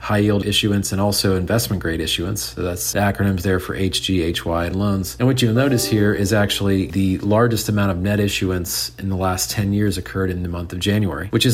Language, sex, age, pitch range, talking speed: English, male, 40-59, 95-110 Hz, 215 wpm